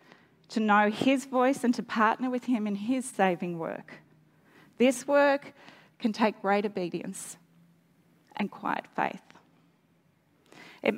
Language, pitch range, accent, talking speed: English, 190-225 Hz, Australian, 125 wpm